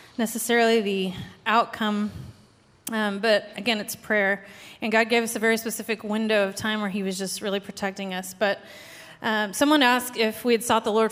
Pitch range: 205-240 Hz